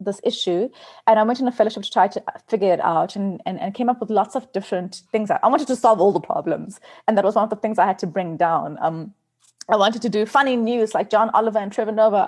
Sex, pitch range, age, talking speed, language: female, 170-220 Hz, 30-49, 275 wpm, English